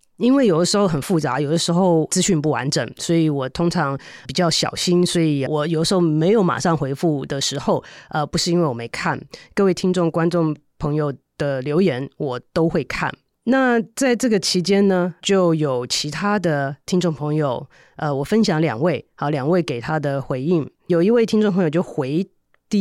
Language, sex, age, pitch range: Chinese, female, 30-49, 150-195 Hz